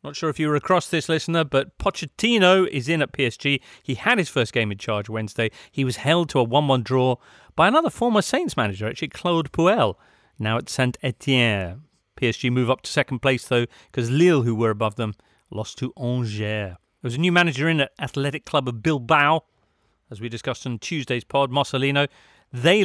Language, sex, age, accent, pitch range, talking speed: English, male, 40-59, British, 120-155 Hz, 195 wpm